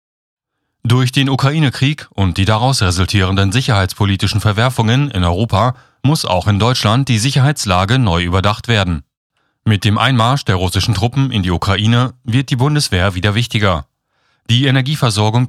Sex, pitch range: male, 100-130 Hz